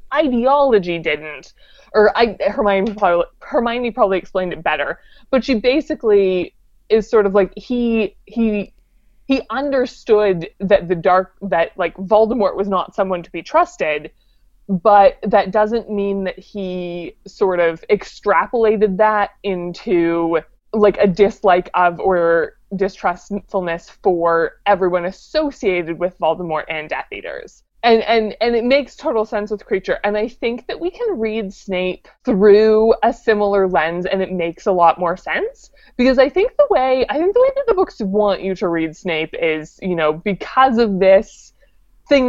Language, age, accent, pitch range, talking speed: English, 20-39, American, 180-235 Hz, 155 wpm